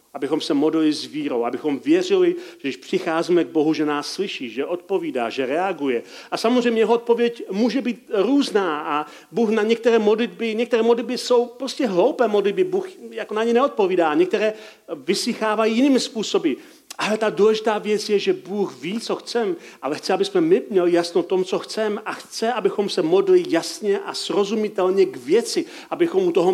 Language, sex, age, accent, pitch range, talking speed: Czech, male, 40-59, native, 165-250 Hz, 180 wpm